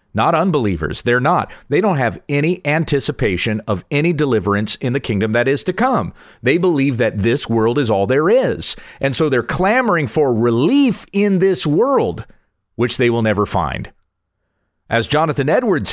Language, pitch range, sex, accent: English, 100-150 Hz, male, American